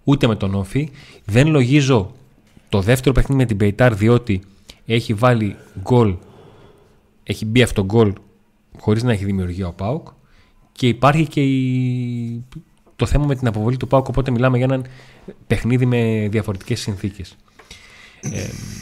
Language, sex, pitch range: Greek, male, 105-130 Hz